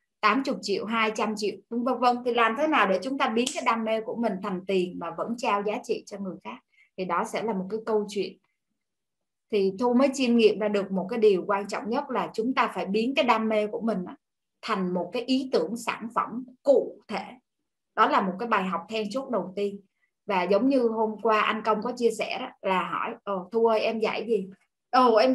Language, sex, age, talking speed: Vietnamese, female, 20-39, 235 wpm